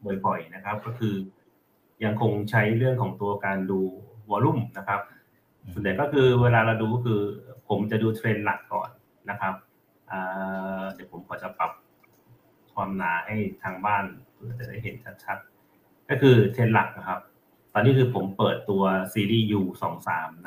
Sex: male